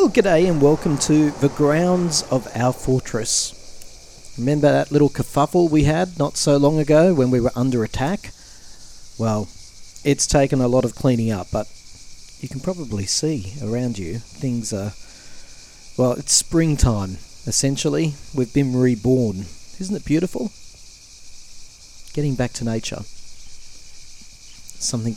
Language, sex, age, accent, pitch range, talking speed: English, male, 40-59, Australian, 100-135 Hz, 135 wpm